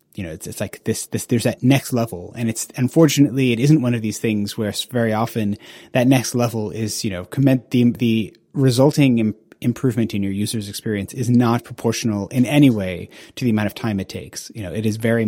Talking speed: 225 wpm